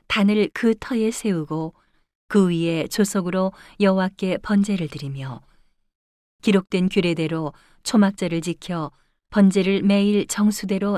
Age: 40-59